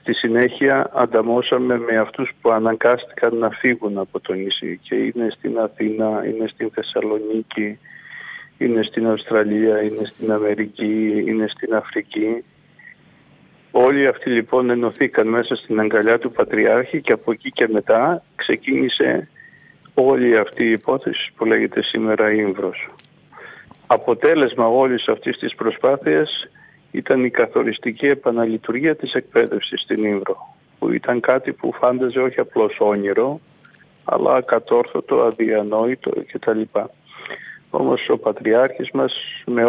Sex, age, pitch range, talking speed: male, 50-69, 110-135 Hz, 125 wpm